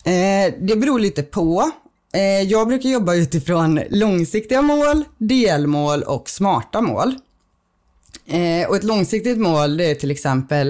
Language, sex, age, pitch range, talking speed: Swedish, female, 20-39, 140-190 Hz, 125 wpm